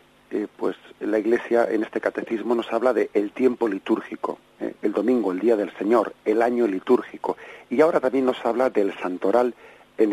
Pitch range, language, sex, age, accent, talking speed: 110-140 Hz, Spanish, male, 50-69, Spanish, 180 wpm